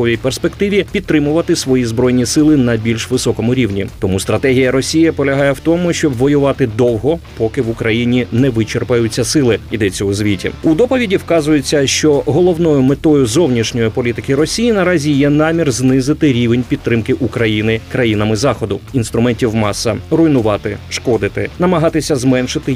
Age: 30-49